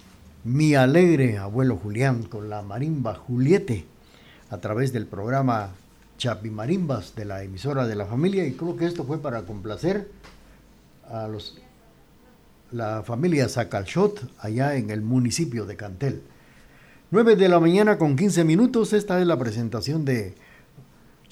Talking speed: 145 wpm